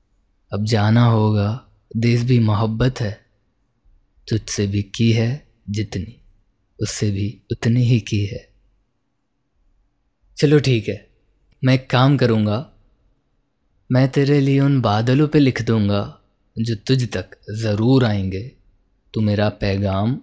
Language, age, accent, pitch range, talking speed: Hindi, 20-39, native, 100-120 Hz, 120 wpm